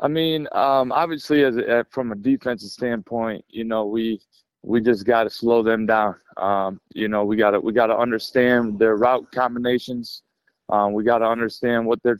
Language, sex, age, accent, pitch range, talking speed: English, male, 20-39, American, 110-130 Hz, 185 wpm